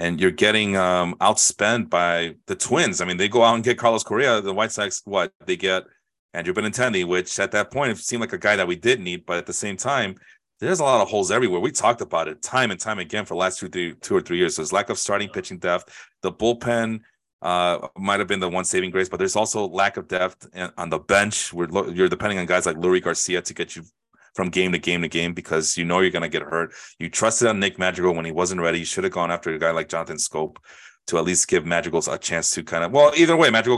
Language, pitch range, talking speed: English, 90-115 Hz, 270 wpm